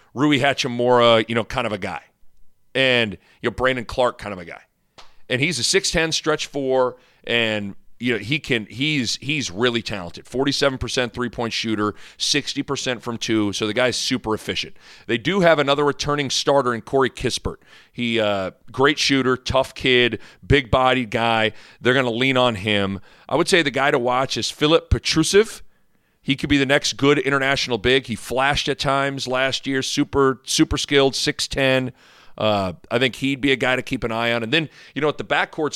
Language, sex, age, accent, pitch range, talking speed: English, male, 40-59, American, 110-140 Hz, 195 wpm